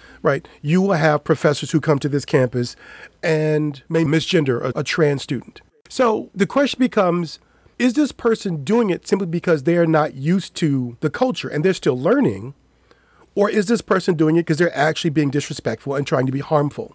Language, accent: English, American